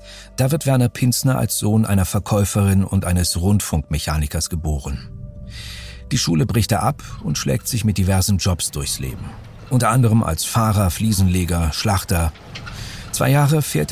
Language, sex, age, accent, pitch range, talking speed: German, male, 50-69, German, 95-125 Hz, 145 wpm